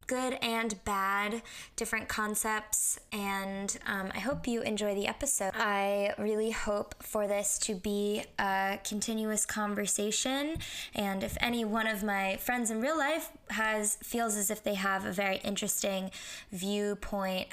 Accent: American